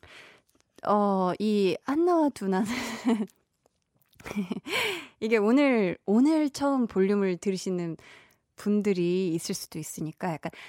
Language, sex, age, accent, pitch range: Korean, female, 20-39, native, 190-275 Hz